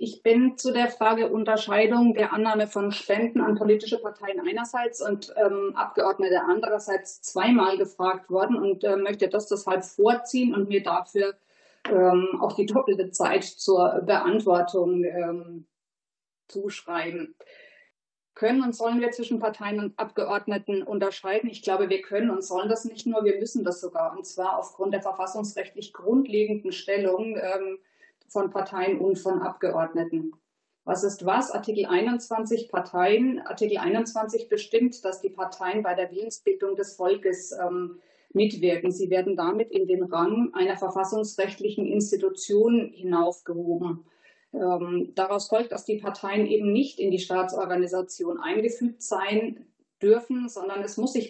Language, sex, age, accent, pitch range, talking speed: German, female, 30-49, German, 185-225 Hz, 140 wpm